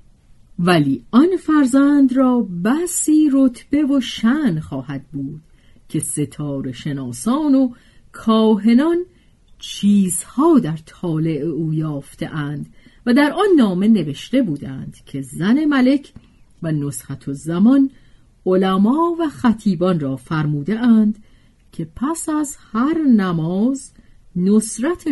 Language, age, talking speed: Persian, 40-59, 105 wpm